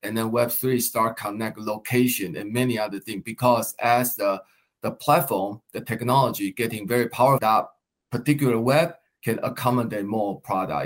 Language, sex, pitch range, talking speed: English, male, 115-140 Hz, 150 wpm